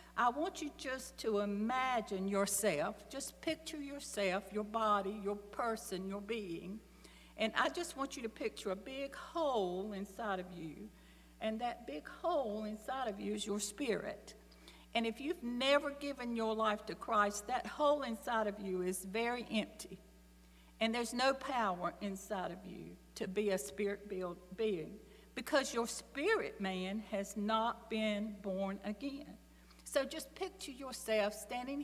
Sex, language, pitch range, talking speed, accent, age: female, English, 200-265 Hz, 155 wpm, American, 60-79